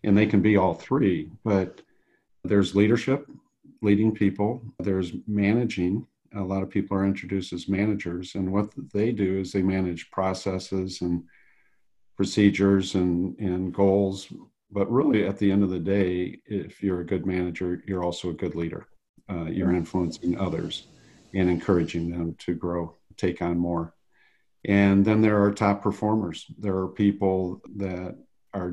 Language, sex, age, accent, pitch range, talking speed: English, male, 50-69, American, 90-100 Hz, 155 wpm